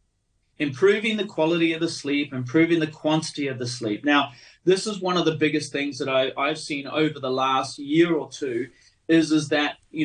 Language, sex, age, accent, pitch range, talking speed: English, male, 30-49, Australian, 145-180 Hz, 205 wpm